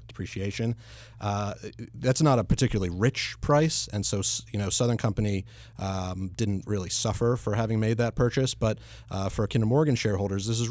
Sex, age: male, 30-49